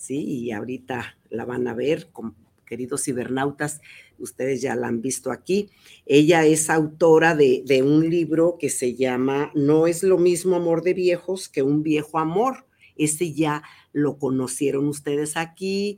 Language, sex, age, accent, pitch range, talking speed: Spanish, female, 50-69, Mexican, 135-175 Hz, 160 wpm